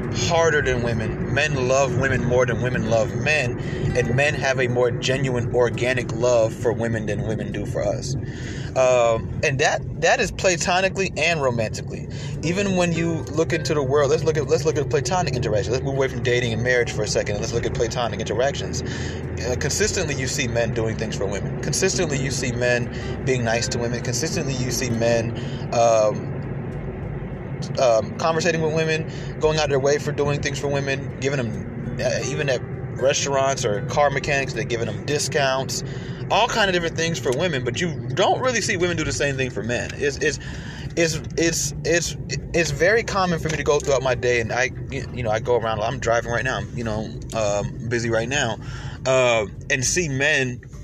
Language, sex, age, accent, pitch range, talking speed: English, male, 30-49, American, 120-150 Hz, 200 wpm